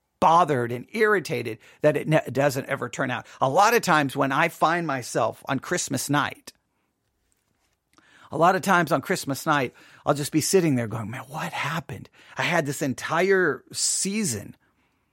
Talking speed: 165 wpm